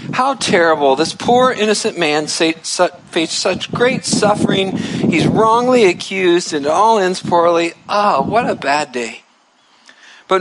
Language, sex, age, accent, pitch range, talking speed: English, male, 50-69, American, 170-230 Hz, 145 wpm